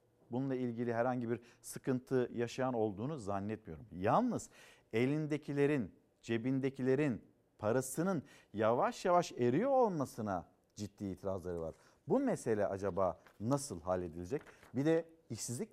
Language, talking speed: Turkish, 105 wpm